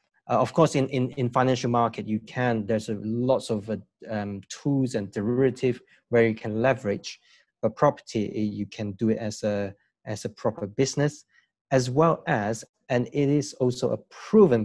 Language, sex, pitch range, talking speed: English, male, 110-135 Hz, 180 wpm